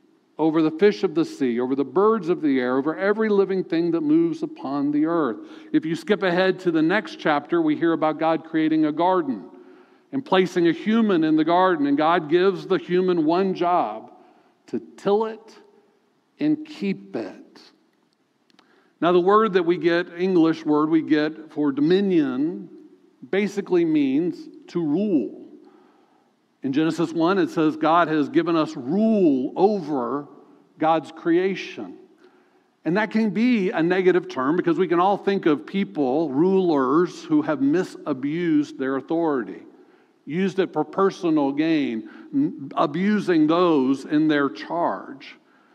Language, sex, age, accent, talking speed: English, male, 50-69, American, 150 wpm